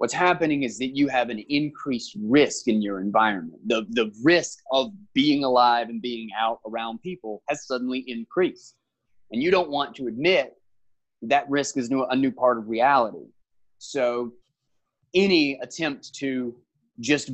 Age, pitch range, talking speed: 20-39, 120-175 Hz, 160 wpm